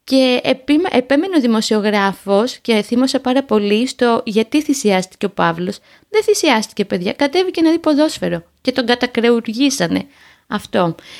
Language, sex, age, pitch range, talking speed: Greek, female, 20-39, 210-250 Hz, 135 wpm